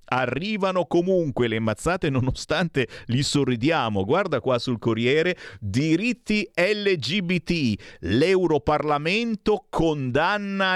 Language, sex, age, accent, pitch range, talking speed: Italian, male, 40-59, native, 115-180 Hz, 85 wpm